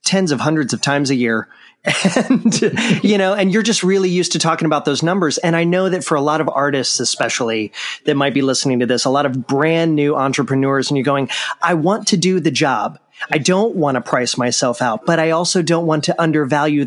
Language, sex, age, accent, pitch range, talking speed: English, male, 30-49, American, 135-180 Hz, 230 wpm